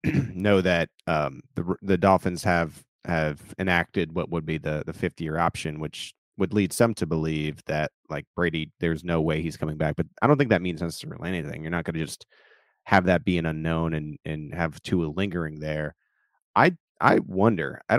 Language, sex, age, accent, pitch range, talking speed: English, male, 30-49, American, 80-90 Hz, 205 wpm